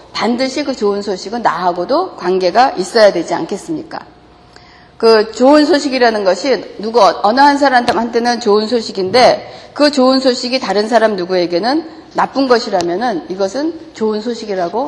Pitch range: 195-295 Hz